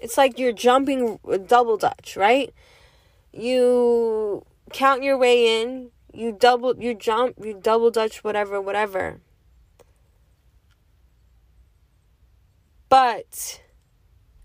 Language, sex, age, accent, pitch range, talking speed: English, female, 10-29, American, 220-275 Hz, 90 wpm